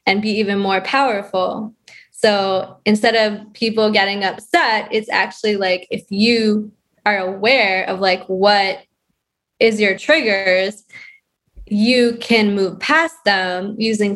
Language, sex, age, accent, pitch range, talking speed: English, female, 20-39, American, 200-235 Hz, 125 wpm